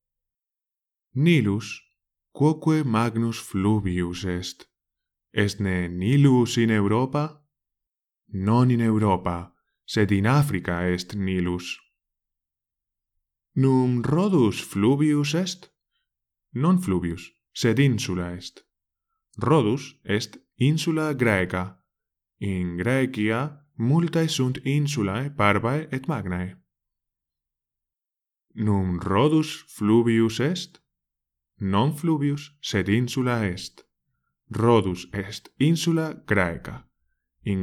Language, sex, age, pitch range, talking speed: English, male, 20-39, 95-140 Hz, 85 wpm